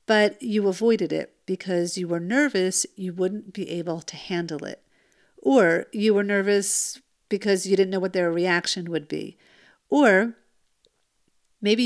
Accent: American